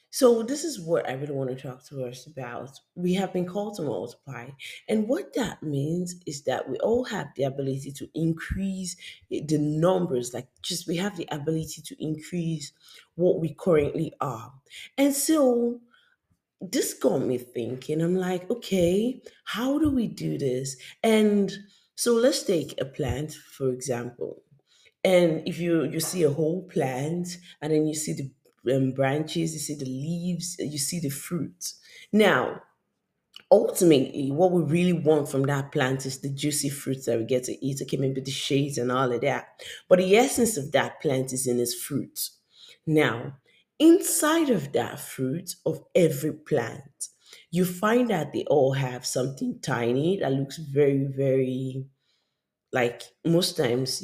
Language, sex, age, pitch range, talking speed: English, female, 20-39, 135-180 Hz, 165 wpm